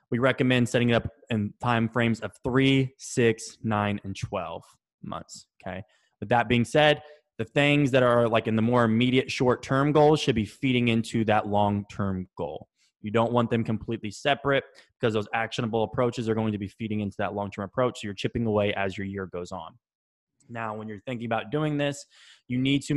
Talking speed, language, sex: 200 wpm, English, male